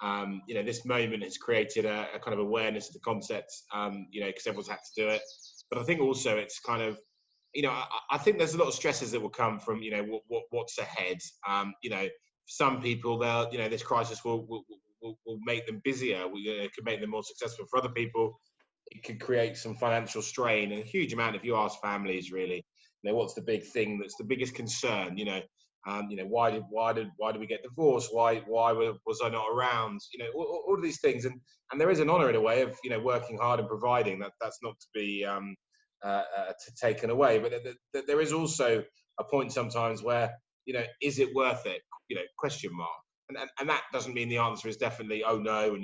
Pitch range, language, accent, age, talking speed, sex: 110-155 Hz, English, British, 20-39, 250 wpm, male